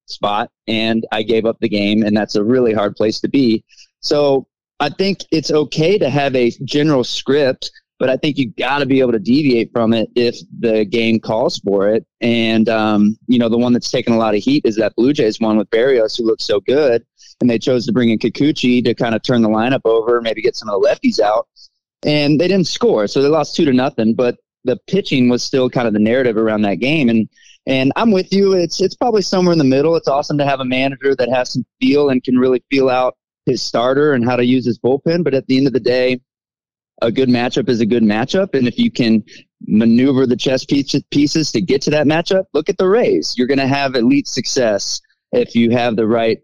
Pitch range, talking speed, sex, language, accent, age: 115-150 Hz, 240 wpm, male, English, American, 20-39